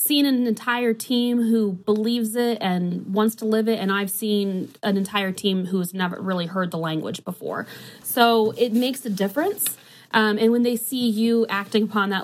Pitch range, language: 185-235 Hz, English